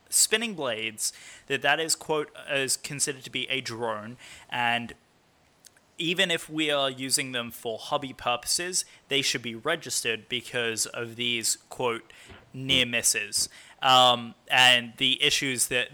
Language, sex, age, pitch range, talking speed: English, male, 20-39, 120-155 Hz, 140 wpm